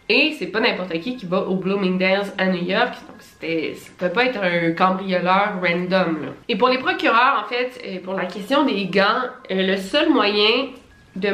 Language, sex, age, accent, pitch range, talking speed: French, female, 20-39, Canadian, 185-230 Hz, 195 wpm